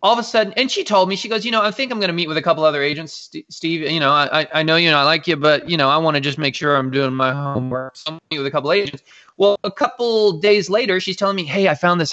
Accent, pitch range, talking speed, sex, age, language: American, 150-195 Hz, 310 wpm, male, 20-39, English